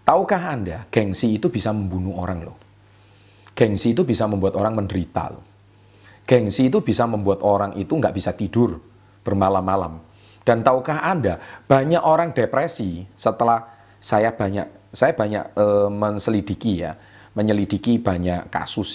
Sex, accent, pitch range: male, native, 95-115 Hz